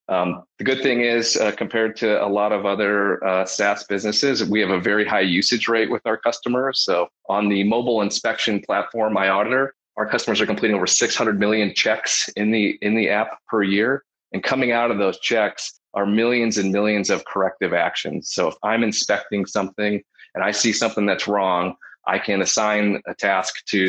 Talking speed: 195 wpm